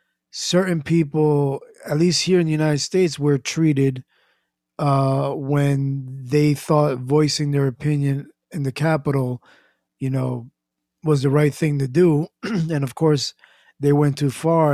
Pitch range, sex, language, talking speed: 115-165 Hz, male, English, 145 wpm